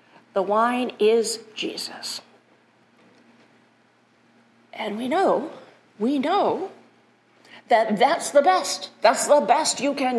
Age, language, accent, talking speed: 50-69, English, American, 105 wpm